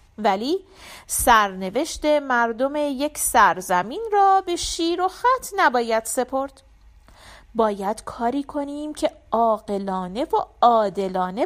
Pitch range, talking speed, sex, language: 225-315 Hz, 100 wpm, female, Persian